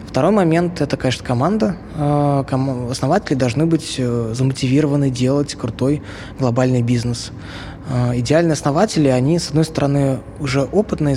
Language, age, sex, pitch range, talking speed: Russian, 20-39, male, 125-150 Hz, 115 wpm